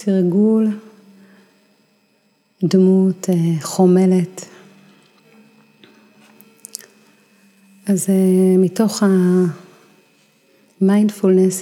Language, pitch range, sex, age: Hebrew, 180-195 Hz, female, 30-49